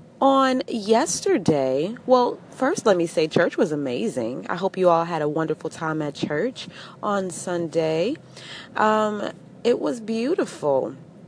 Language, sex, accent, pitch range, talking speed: English, female, American, 170-240 Hz, 140 wpm